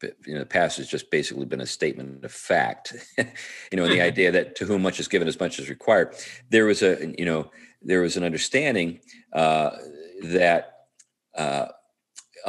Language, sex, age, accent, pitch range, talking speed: English, male, 40-59, American, 75-95 Hz, 185 wpm